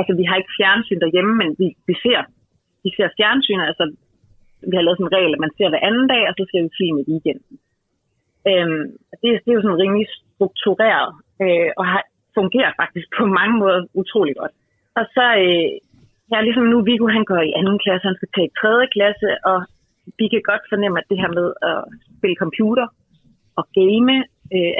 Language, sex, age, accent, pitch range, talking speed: Danish, female, 30-49, native, 175-215 Hz, 205 wpm